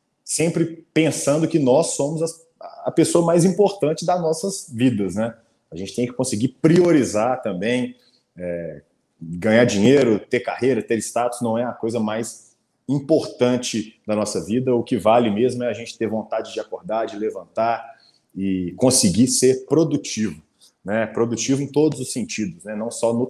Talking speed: 165 wpm